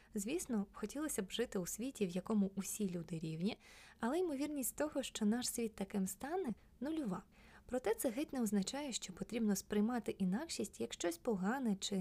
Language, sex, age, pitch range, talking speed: Ukrainian, female, 20-39, 185-230 Hz, 165 wpm